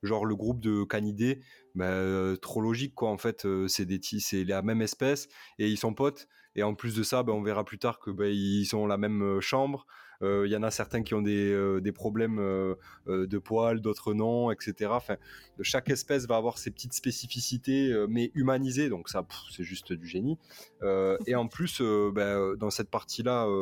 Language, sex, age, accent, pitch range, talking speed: French, male, 20-39, French, 95-120 Hz, 205 wpm